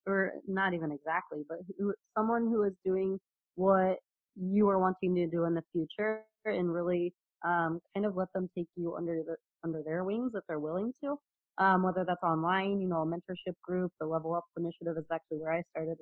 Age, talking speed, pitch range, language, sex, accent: 20-39, 205 wpm, 160-190 Hz, English, female, American